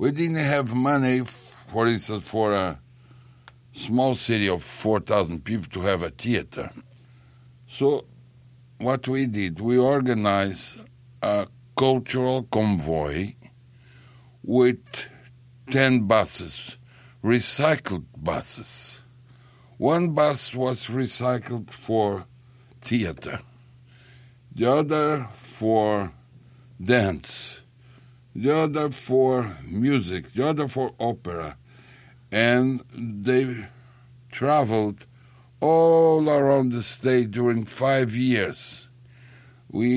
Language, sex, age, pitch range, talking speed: English, male, 60-79, 110-125 Hz, 90 wpm